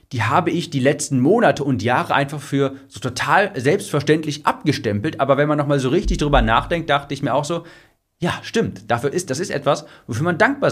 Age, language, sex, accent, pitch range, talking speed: 40-59, German, male, German, 115-150 Hz, 205 wpm